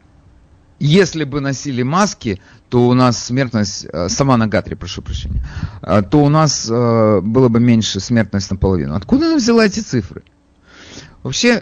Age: 30-49